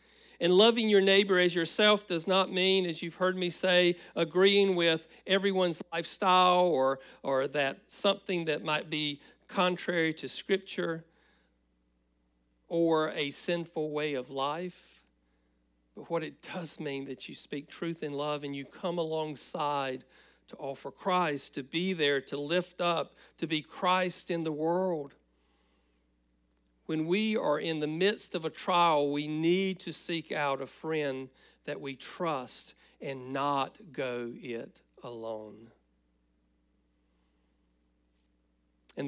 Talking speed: 135 wpm